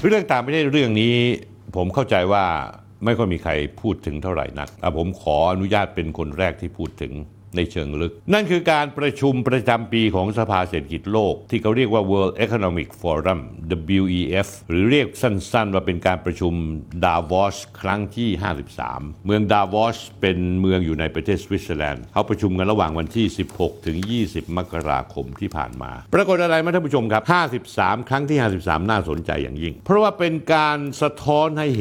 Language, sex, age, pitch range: Thai, male, 60-79, 85-115 Hz